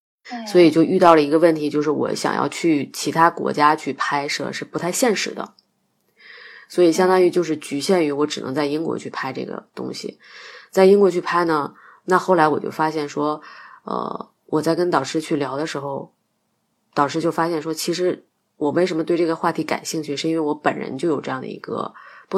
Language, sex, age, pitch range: Chinese, female, 20-39, 145-175 Hz